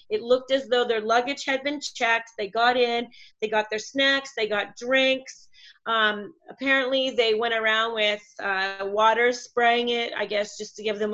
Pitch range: 215-255 Hz